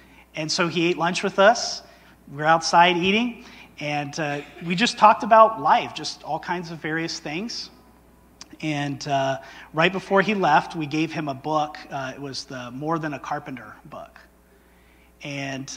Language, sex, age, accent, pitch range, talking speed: English, male, 30-49, American, 135-170 Hz, 170 wpm